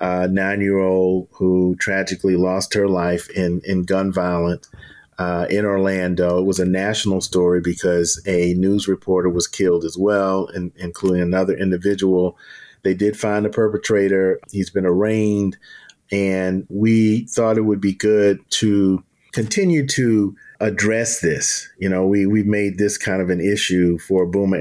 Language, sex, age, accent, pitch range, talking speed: English, male, 40-59, American, 95-105 Hz, 155 wpm